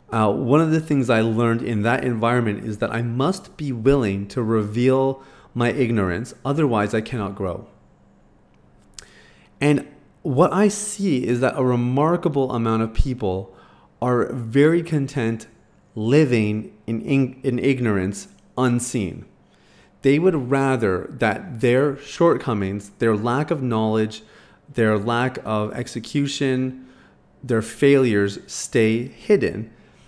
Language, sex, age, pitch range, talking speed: English, male, 30-49, 110-140 Hz, 120 wpm